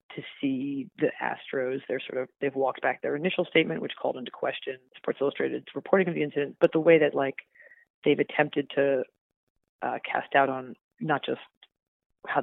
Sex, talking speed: female, 185 wpm